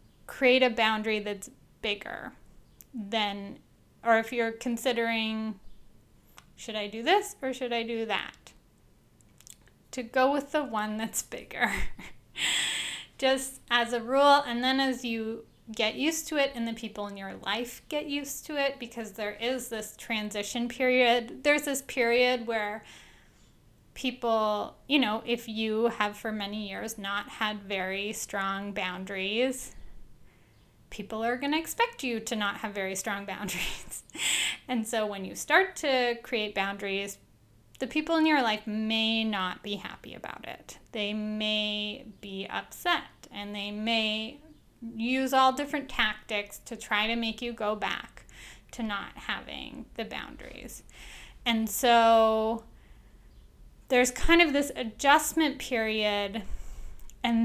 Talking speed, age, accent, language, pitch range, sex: 140 wpm, 10-29, American, English, 210-260 Hz, female